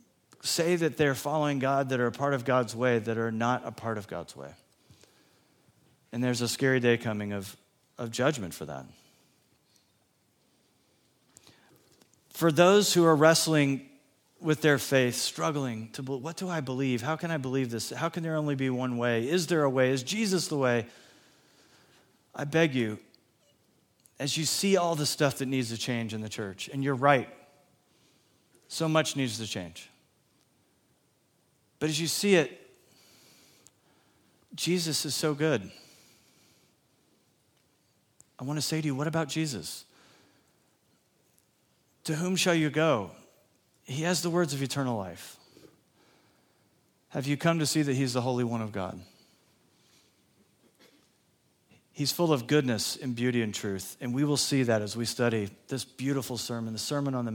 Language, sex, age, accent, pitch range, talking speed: English, male, 40-59, American, 115-155 Hz, 160 wpm